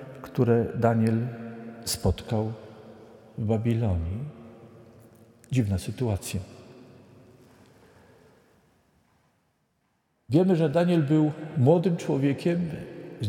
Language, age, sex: Polish, 50-69, male